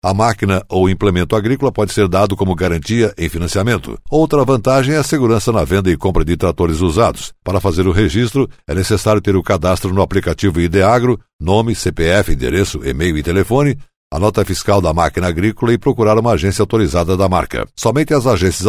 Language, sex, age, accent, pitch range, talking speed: Portuguese, male, 60-79, Brazilian, 95-115 Hz, 185 wpm